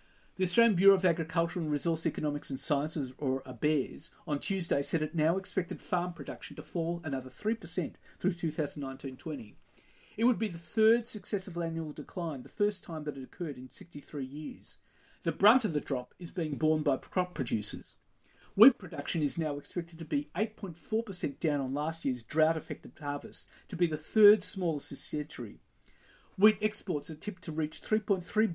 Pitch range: 150-200 Hz